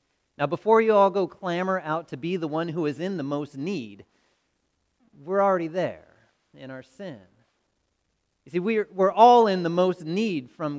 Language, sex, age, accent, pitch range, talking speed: English, male, 40-59, American, 165-220 Hz, 185 wpm